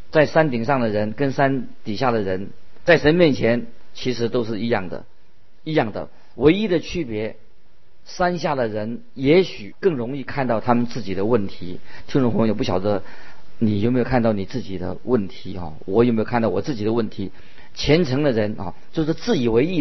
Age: 50-69